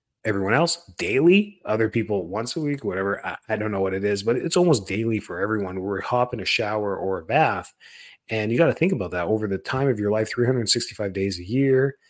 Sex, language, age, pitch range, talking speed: male, English, 30-49, 100-135 Hz, 230 wpm